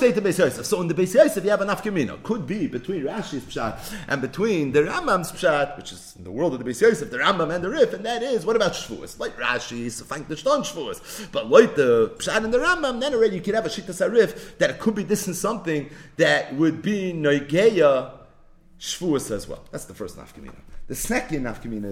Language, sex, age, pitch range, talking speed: English, male, 30-49, 145-240 Hz, 215 wpm